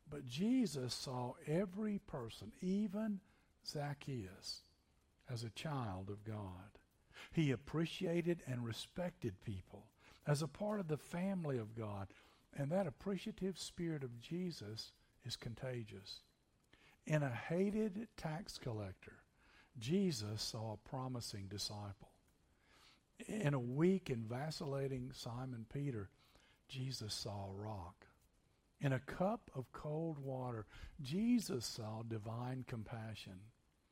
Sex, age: male, 60-79